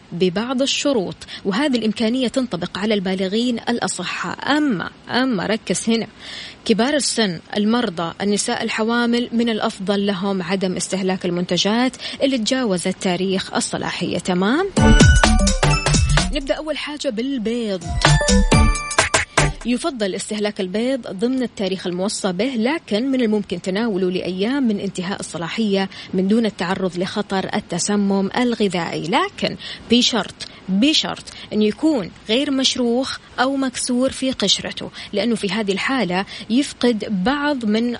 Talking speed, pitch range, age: 110 wpm, 190-245 Hz, 20-39